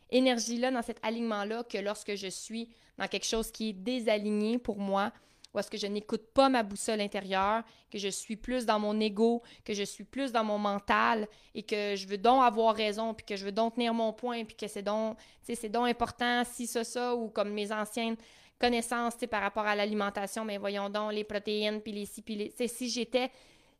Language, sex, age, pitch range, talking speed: French, female, 20-39, 205-240 Hz, 220 wpm